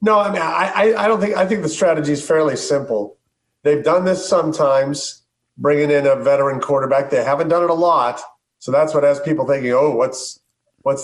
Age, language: 40-59, English